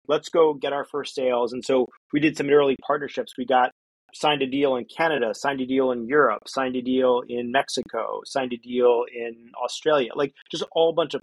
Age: 30-49